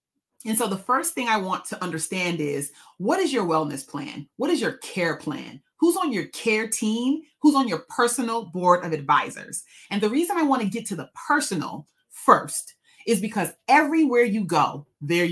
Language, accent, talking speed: English, American, 190 wpm